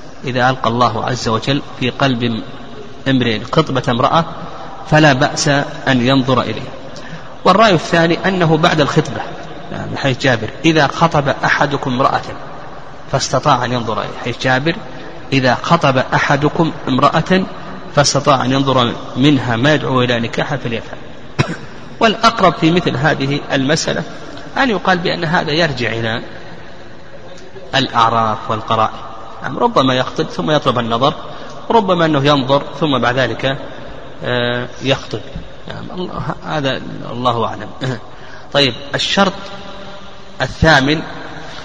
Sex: male